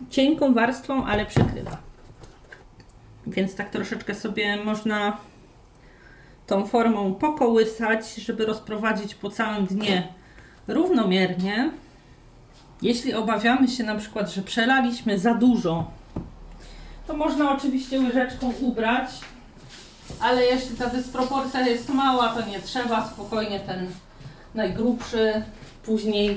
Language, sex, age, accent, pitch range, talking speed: Polish, female, 30-49, native, 195-250 Hz, 100 wpm